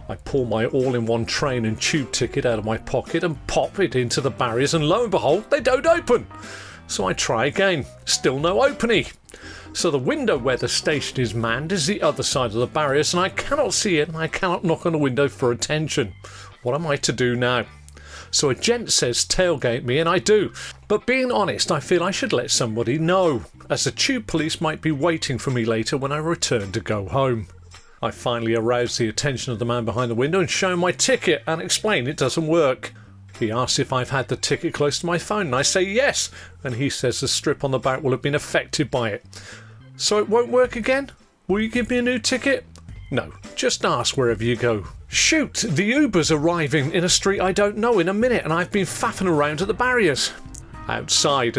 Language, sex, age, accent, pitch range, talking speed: English, male, 40-59, British, 120-175 Hz, 225 wpm